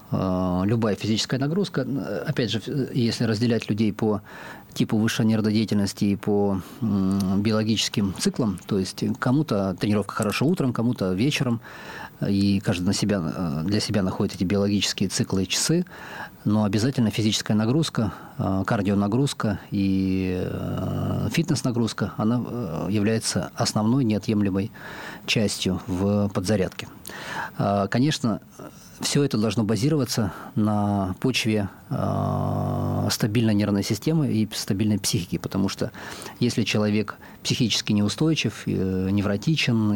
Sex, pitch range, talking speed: male, 100-115 Hz, 105 wpm